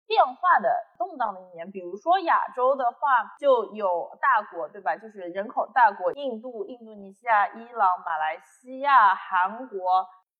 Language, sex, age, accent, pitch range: Chinese, female, 20-39, native, 200-270 Hz